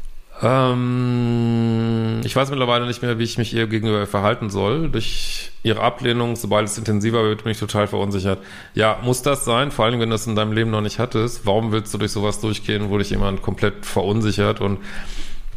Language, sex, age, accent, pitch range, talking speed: German, male, 40-59, German, 105-120 Hz, 195 wpm